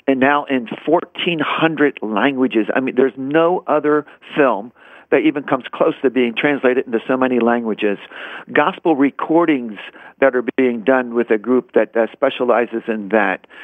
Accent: American